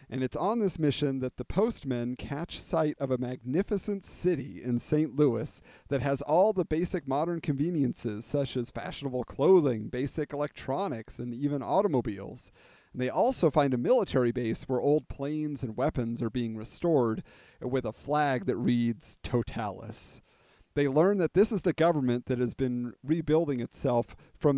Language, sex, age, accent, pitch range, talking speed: English, male, 40-59, American, 125-155 Hz, 160 wpm